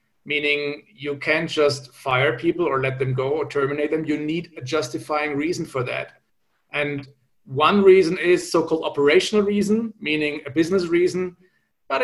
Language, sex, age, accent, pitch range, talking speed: English, male, 40-59, German, 145-190 Hz, 160 wpm